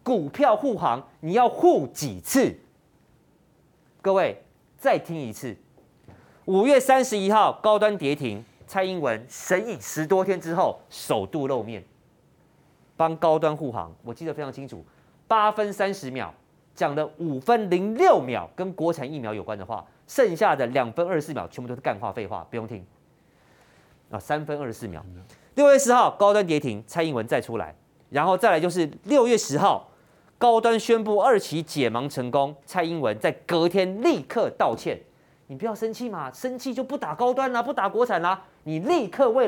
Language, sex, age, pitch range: Chinese, male, 30-49, 145-235 Hz